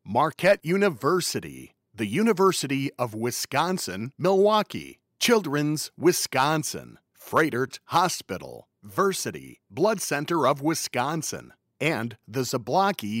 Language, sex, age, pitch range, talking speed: English, male, 50-69, 130-180 Hz, 85 wpm